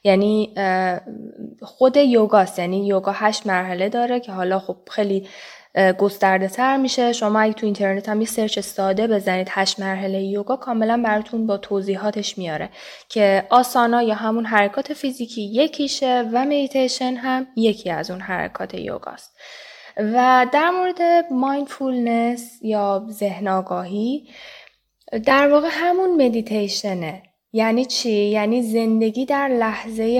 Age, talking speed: 10-29, 130 wpm